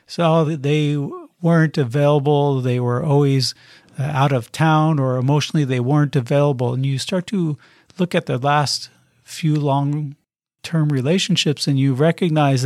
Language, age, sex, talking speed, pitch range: English, 50-69, male, 140 wpm, 135-165 Hz